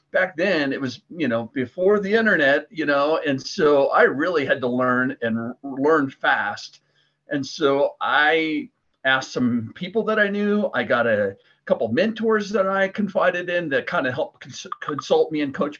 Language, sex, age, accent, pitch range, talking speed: English, male, 50-69, American, 125-175 Hz, 180 wpm